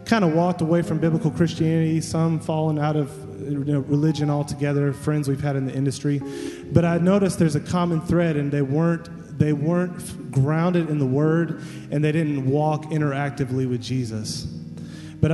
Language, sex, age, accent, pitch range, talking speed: English, male, 20-39, American, 140-160 Hz, 170 wpm